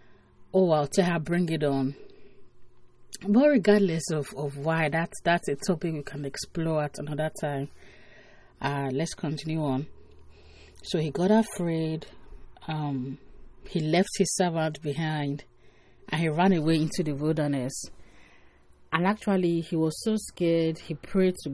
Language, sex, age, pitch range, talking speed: English, female, 30-49, 140-170 Hz, 145 wpm